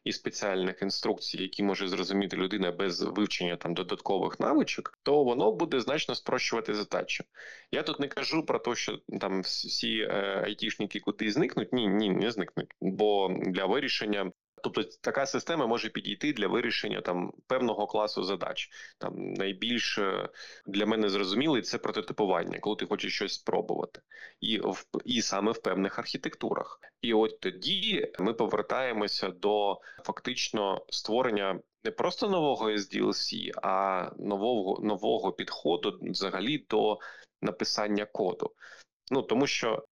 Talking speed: 135 wpm